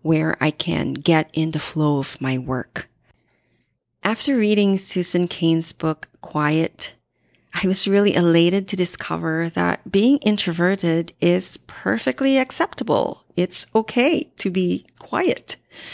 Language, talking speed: English, 125 wpm